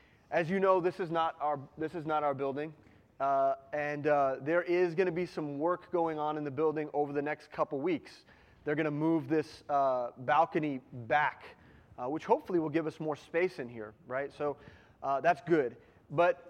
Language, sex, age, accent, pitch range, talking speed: English, male, 30-49, American, 130-165 Hz, 205 wpm